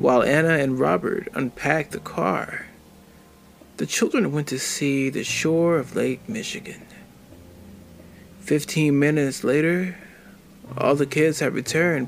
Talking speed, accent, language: 125 wpm, American, English